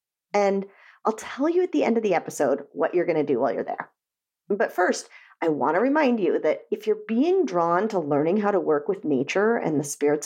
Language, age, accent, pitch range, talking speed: English, 40-59, American, 165-240 Hz, 235 wpm